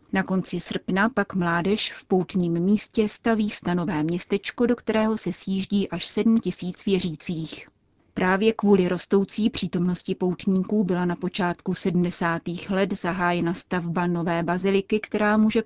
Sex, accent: female, native